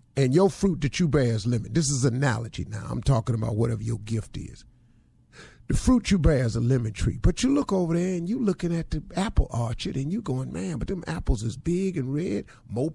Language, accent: English, American